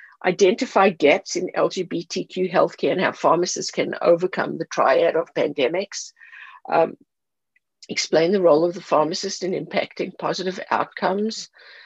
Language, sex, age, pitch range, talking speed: English, female, 50-69, 170-275 Hz, 125 wpm